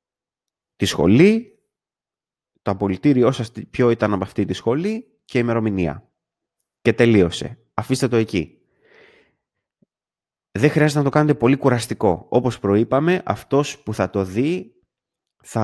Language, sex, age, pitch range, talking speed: Greek, male, 20-39, 100-130 Hz, 125 wpm